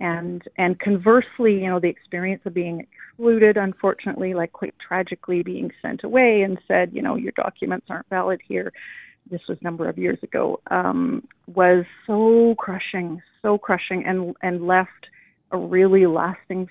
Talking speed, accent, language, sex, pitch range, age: 160 wpm, American, English, female, 175-205 Hz, 30-49